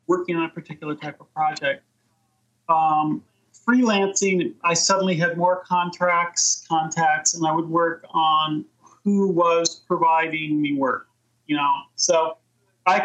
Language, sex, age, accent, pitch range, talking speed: English, male, 30-49, American, 150-180 Hz, 135 wpm